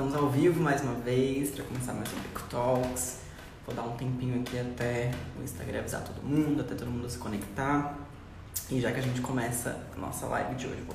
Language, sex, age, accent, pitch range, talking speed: Portuguese, female, 20-39, Brazilian, 120-130 Hz, 215 wpm